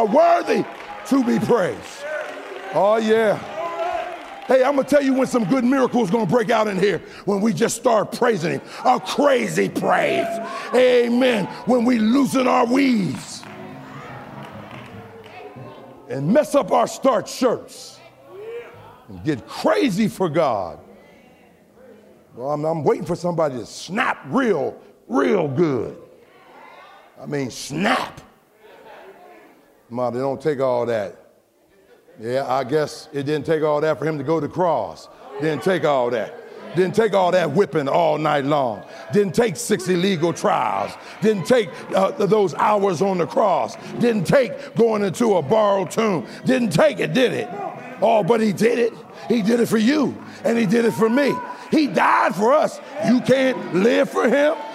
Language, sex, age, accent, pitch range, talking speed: English, male, 50-69, American, 185-260 Hz, 155 wpm